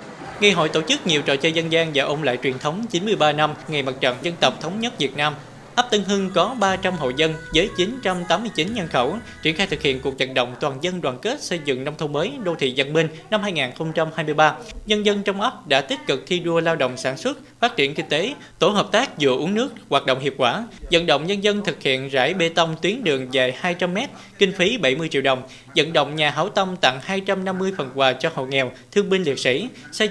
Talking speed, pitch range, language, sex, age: 240 wpm, 135-190 Hz, Vietnamese, male, 20-39